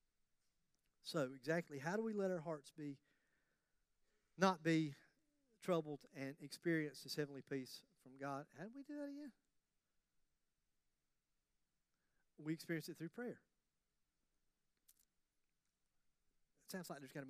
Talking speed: 120 wpm